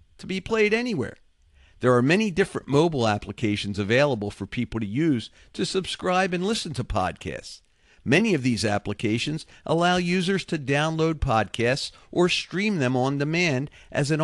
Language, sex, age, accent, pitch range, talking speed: English, male, 50-69, American, 115-180 Hz, 155 wpm